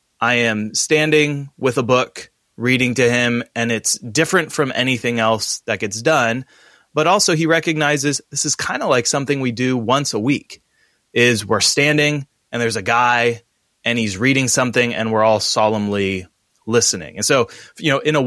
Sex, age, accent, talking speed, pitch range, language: male, 20-39, American, 180 wpm, 110-140 Hz, English